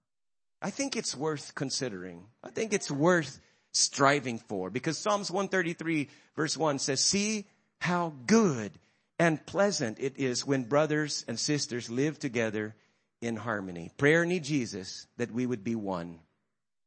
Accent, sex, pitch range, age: American, male, 115-160 Hz, 50-69